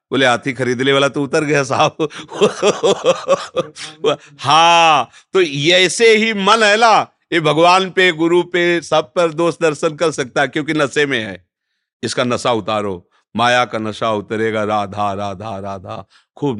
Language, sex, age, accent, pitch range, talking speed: Hindi, male, 50-69, native, 110-155 Hz, 150 wpm